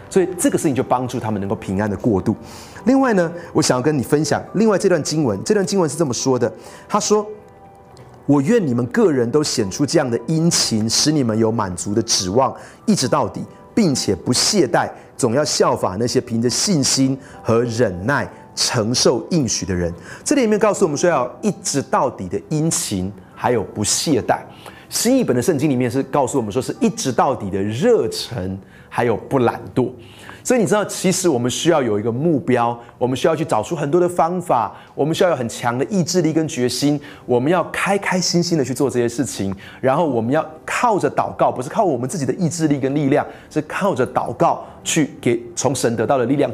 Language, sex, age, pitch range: Chinese, male, 30-49, 115-175 Hz